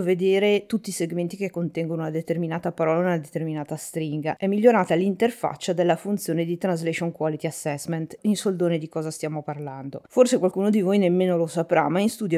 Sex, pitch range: female, 160-185 Hz